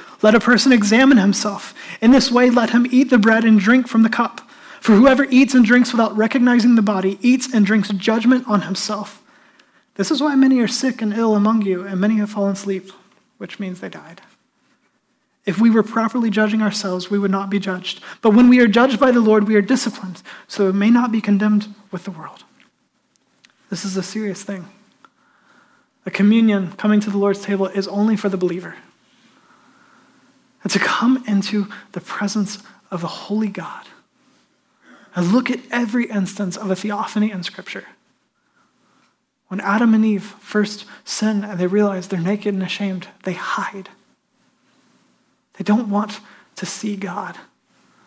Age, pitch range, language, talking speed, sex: 30-49, 195-240 Hz, English, 175 wpm, male